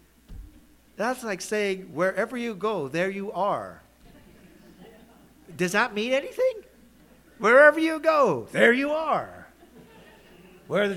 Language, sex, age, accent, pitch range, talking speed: English, male, 50-69, American, 110-185 Hz, 115 wpm